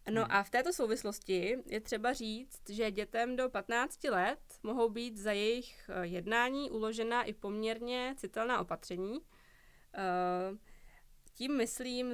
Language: Czech